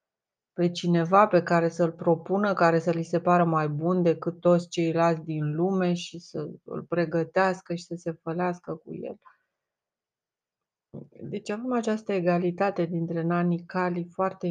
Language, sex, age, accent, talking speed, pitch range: Romanian, female, 30-49, native, 140 wpm, 170-185 Hz